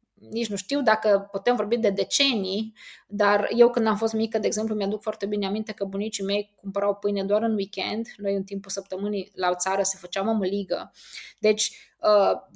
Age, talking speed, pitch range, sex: 20-39, 190 wpm, 195-225 Hz, female